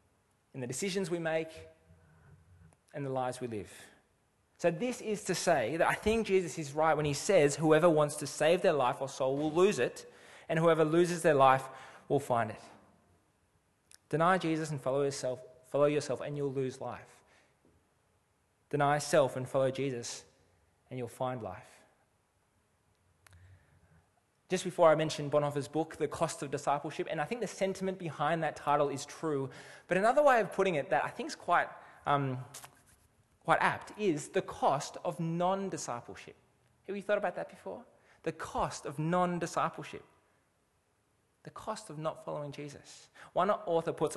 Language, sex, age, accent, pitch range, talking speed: English, male, 20-39, Australian, 125-170 Hz, 165 wpm